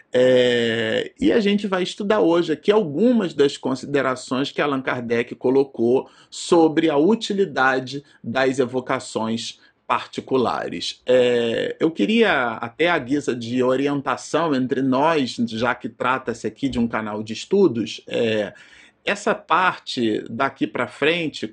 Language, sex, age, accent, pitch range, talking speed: Portuguese, male, 40-59, Brazilian, 125-170 Hz, 130 wpm